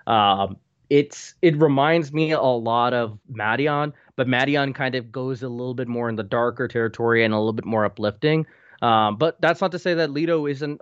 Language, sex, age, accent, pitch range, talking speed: English, male, 20-39, American, 110-135 Hz, 205 wpm